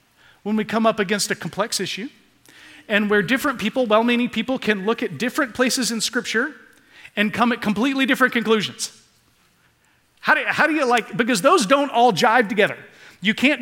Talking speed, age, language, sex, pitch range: 185 wpm, 40-59, English, male, 165-235 Hz